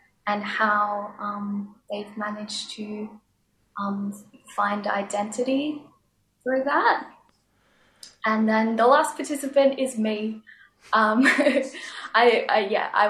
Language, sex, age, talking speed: English, female, 10-29, 105 wpm